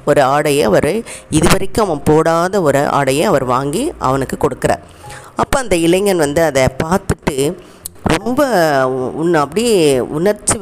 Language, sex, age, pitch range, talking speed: Tamil, female, 20-39, 150-200 Hz, 125 wpm